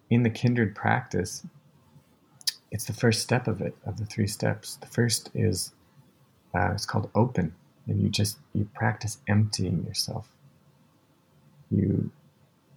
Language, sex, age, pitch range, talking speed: English, male, 30-49, 100-115 Hz, 135 wpm